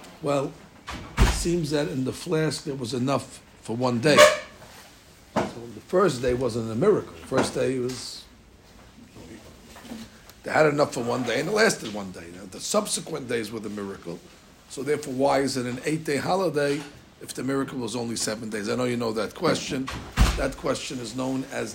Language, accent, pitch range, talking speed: English, American, 115-150 Hz, 190 wpm